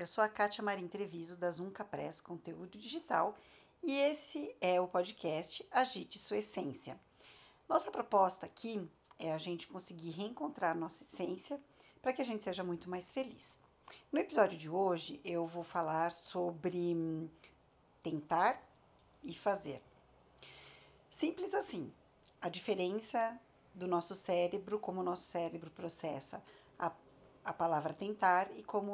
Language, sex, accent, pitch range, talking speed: Portuguese, female, Brazilian, 175-215 Hz, 135 wpm